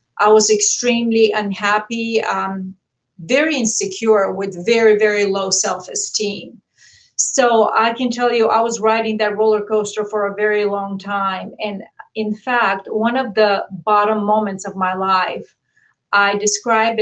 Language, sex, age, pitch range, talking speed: English, female, 40-59, 195-230 Hz, 145 wpm